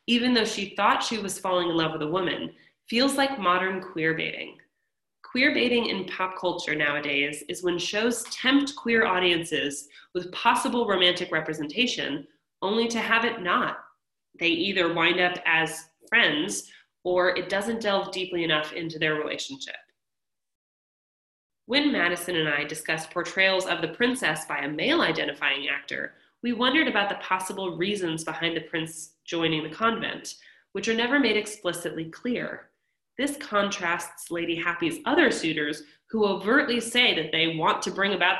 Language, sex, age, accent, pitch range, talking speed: English, female, 20-39, American, 165-225 Hz, 155 wpm